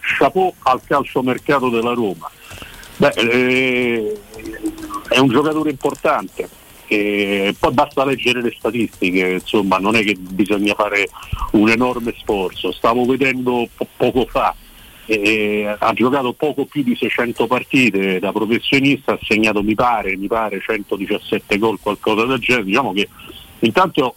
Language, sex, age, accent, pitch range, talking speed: Italian, male, 50-69, native, 105-130 Hz, 140 wpm